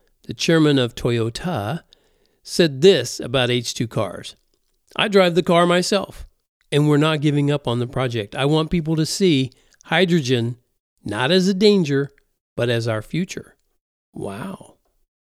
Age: 50-69